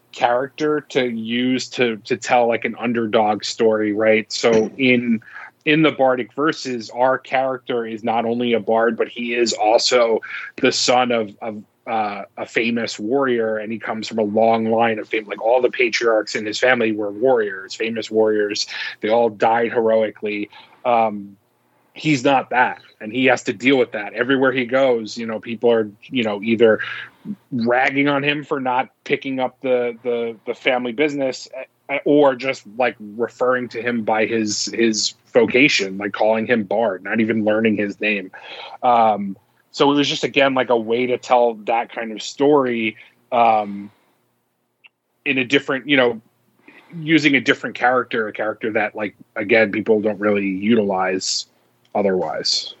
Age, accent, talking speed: 30-49, American, 165 wpm